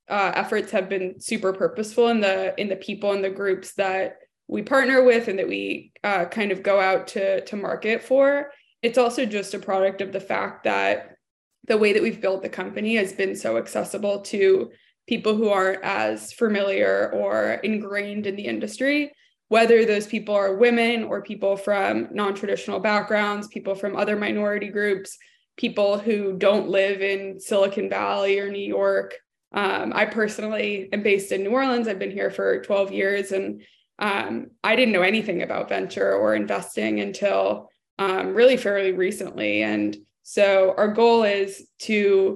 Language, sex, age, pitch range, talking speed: English, female, 20-39, 190-215 Hz, 170 wpm